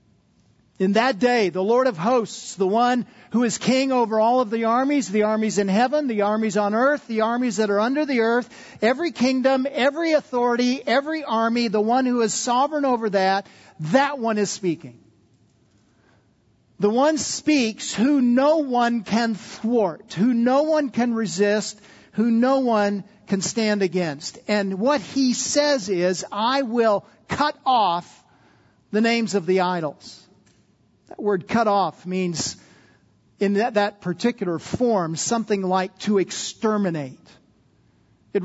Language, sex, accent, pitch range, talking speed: English, male, American, 190-245 Hz, 150 wpm